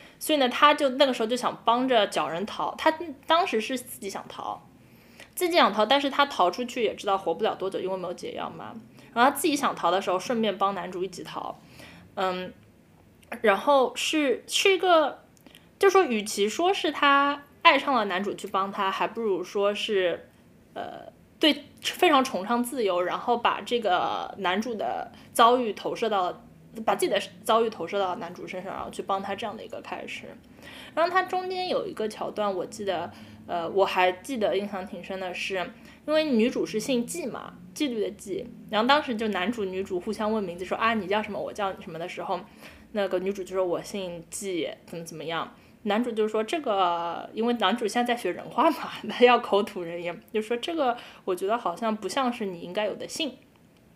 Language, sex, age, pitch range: English, female, 10-29, 190-260 Hz